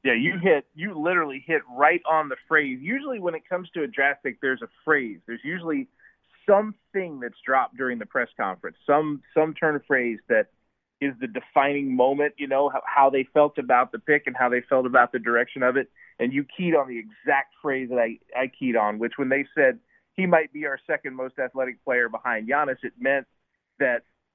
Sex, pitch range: male, 125-160 Hz